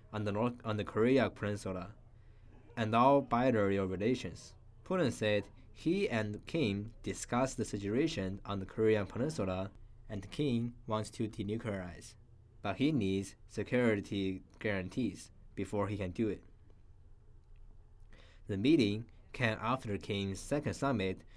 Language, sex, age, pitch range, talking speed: English, male, 20-39, 100-115 Hz, 120 wpm